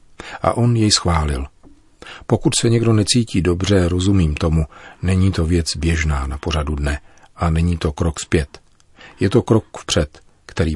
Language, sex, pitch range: Czech, male, 85-110 Hz